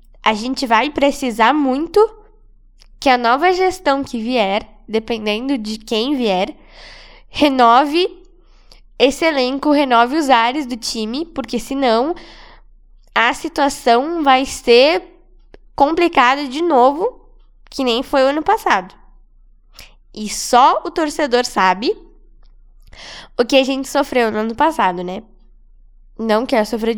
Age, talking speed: 10-29, 120 wpm